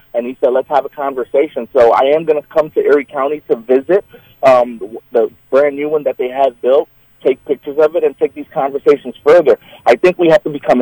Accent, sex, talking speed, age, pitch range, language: American, male, 235 wpm, 30-49, 140-210 Hz, English